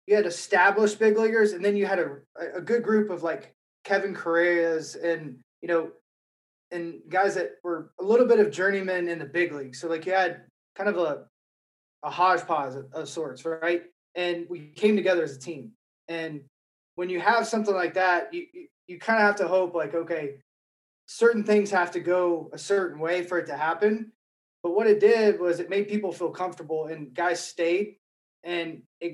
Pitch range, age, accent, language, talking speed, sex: 165-195 Hz, 20-39, American, English, 200 wpm, male